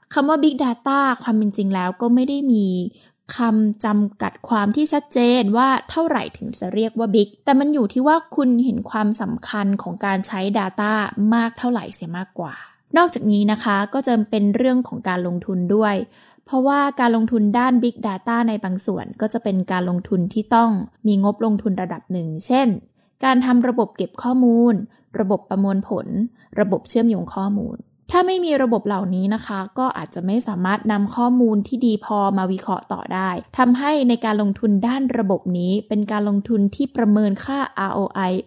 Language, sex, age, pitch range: Thai, female, 10-29, 195-245 Hz